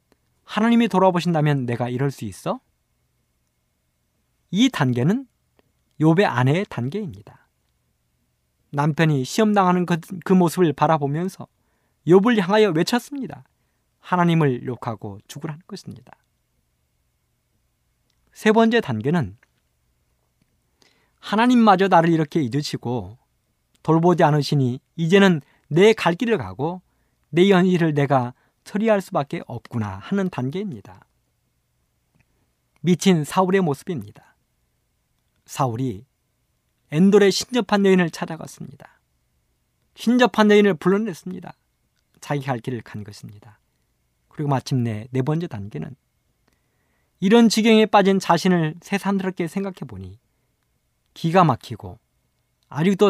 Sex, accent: male, native